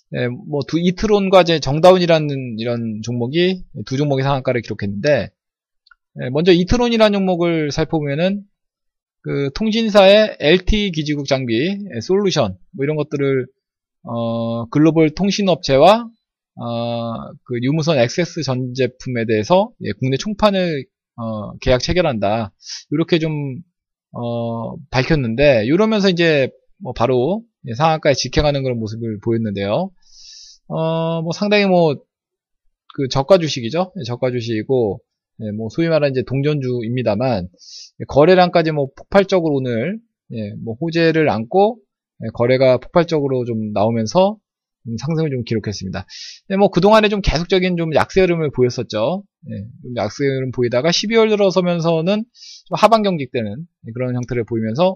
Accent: native